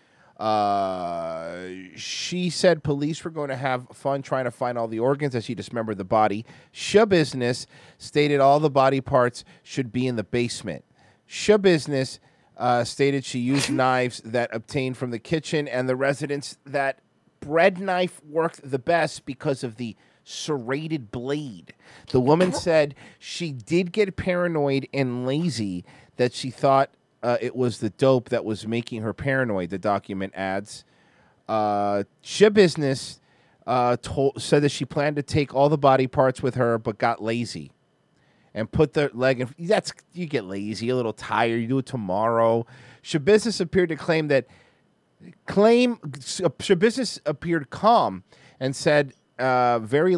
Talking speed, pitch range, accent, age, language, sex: 155 wpm, 115-150 Hz, American, 30-49, English, male